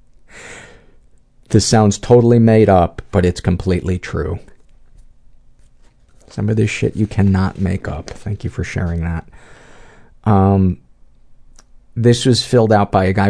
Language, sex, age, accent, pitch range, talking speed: English, male, 50-69, American, 95-110 Hz, 135 wpm